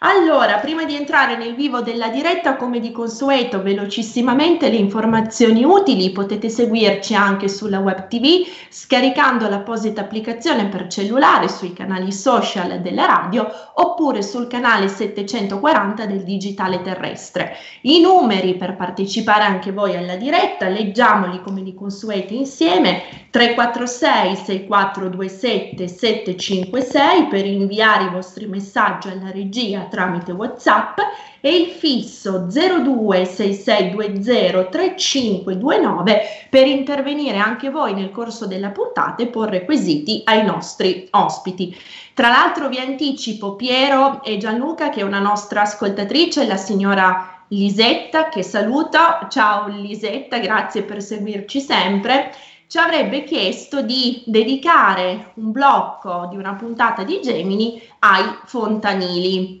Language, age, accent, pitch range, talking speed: Italian, 20-39, native, 195-270 Hz, 115 wpm